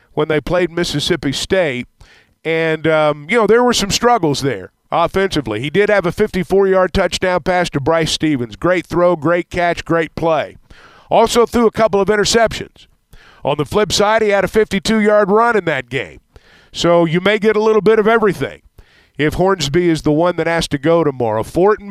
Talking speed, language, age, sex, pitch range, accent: 190 wpm, English, 50-69, male, 145-195 Hz, American